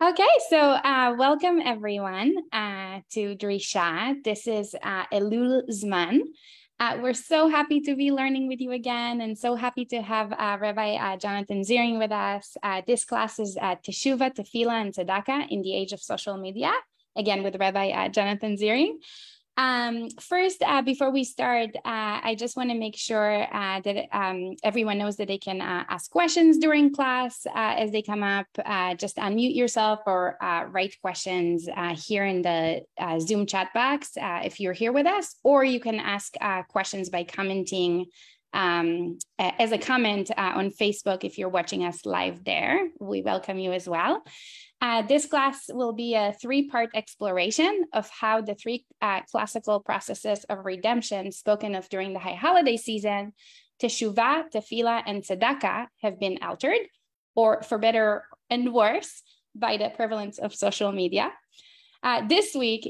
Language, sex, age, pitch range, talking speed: English, female, 10-29, 200-260 Hz, 175 wpm